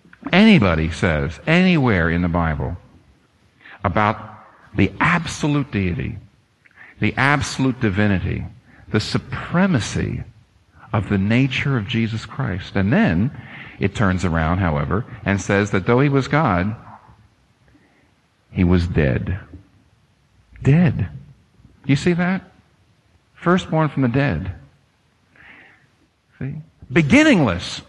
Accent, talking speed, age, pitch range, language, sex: American, 100 wpm, 50-69, 95-135 Hz, English, male